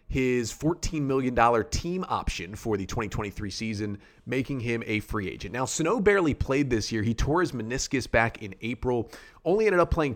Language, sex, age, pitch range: English, male, 30-49, 110-130 Hz